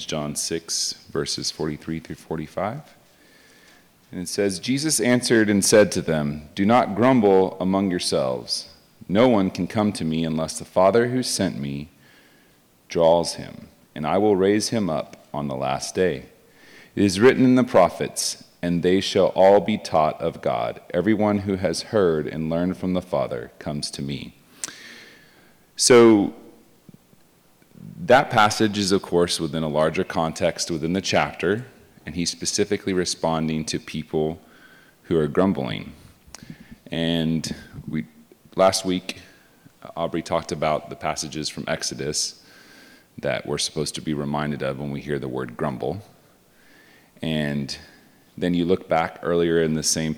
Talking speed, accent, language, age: 150 wpm, American, English, 30-49